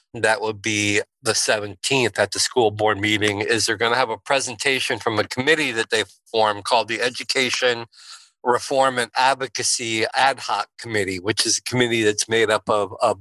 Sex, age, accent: male, 50-69, American